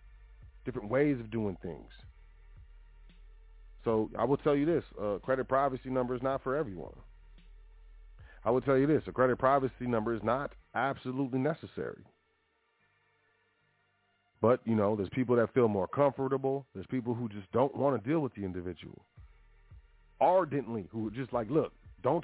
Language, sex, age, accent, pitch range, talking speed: English, male, 40-59, American, 100-135 Hz, 160 wpm